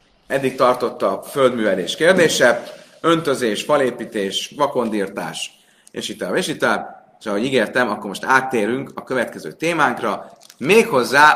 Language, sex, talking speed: Hungarian, male, 115 wpm